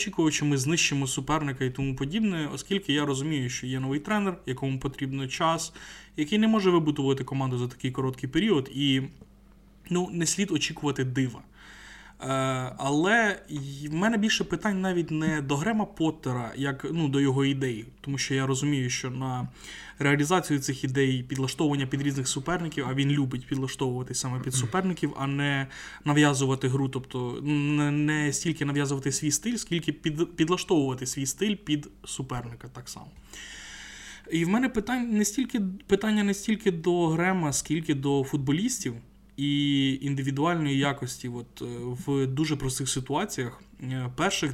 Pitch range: 135-160 Hz